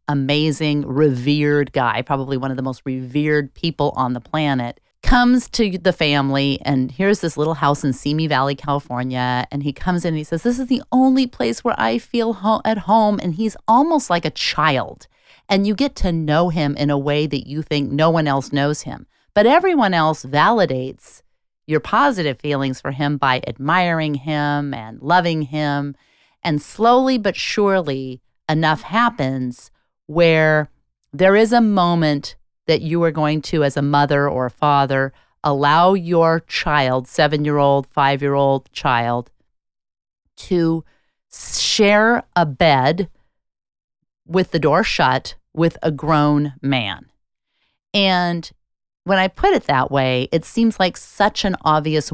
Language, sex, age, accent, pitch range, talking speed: English, female, 30-49, American, 140-180 Hz, 155 wpm